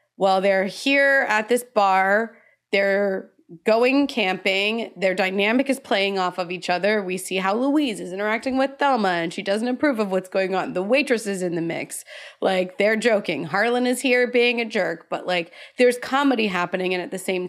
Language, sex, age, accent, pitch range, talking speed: English, female, 20-39, American, 180-225 Hz, 195 wpm